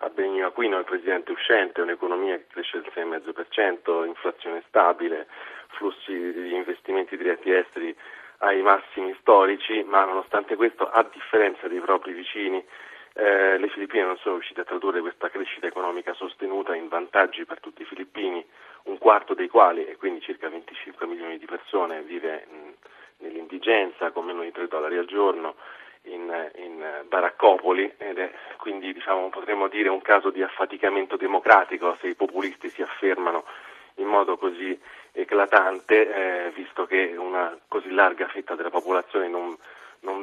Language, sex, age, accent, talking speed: Italian, male, 30-49, native, 150 wpm